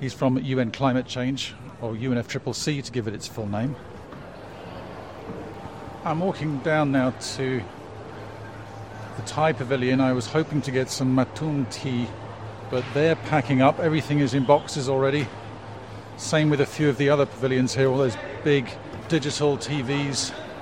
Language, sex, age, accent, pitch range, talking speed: English, male, 50-69, British, 115-145 Hz, 150 wpm